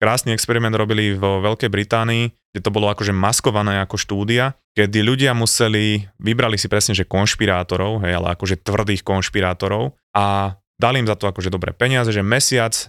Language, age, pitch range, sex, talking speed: Slovak, 20-39, 95-115 Hz, male, 170 wpm